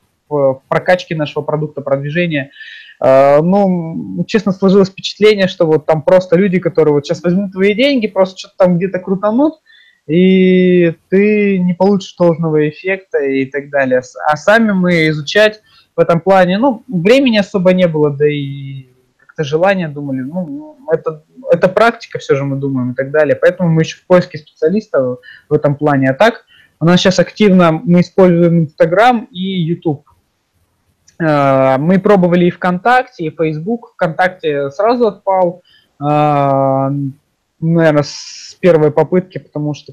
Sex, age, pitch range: male, 20-39, 145-190 Hz